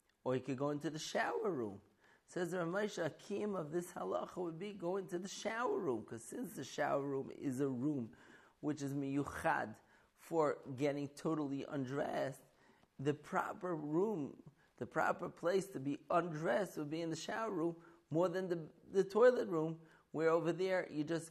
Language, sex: English, male